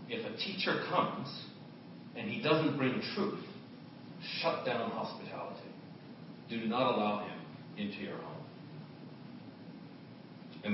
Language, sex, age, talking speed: English, male, 40-59, 110 wpm